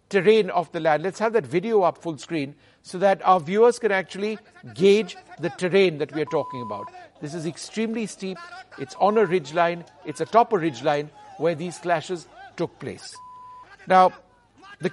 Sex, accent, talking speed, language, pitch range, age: male, Indian, 175 wpm, English, 160-205 Hz, 60-79